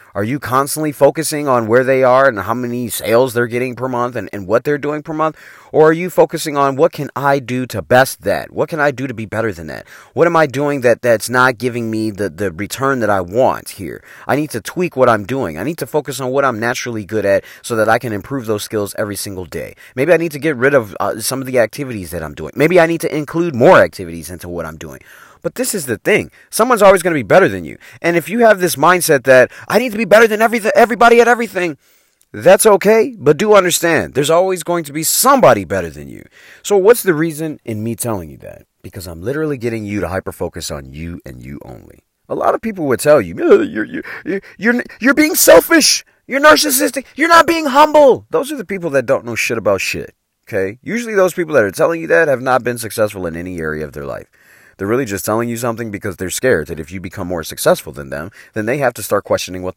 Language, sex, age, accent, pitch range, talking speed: English, male, 30-49, American, 105-175 Hz, 255 wpm